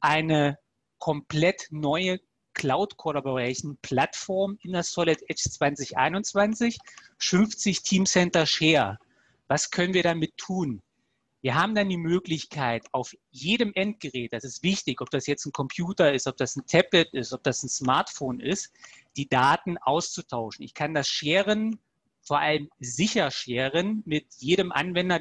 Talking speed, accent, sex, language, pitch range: 140 wpm, German, male, German, 140-180 Hz